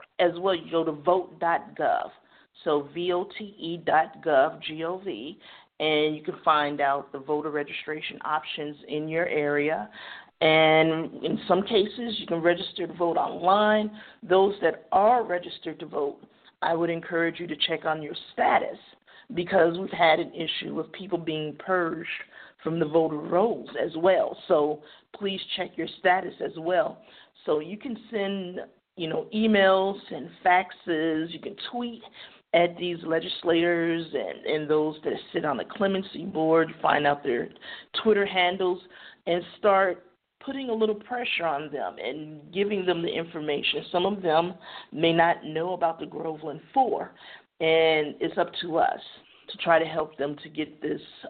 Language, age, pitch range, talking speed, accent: English, 40-59, 160-190 Hz, 155 wpm, American